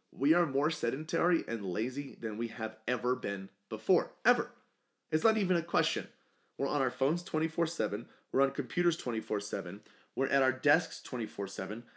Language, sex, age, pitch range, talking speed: English, male, 30-49, 115-155 Hz, 165 wpm